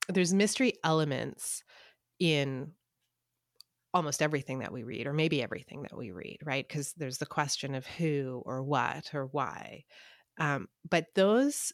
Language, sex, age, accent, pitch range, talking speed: English, female, 30-49, American, 135-175 Hz, 150 wpm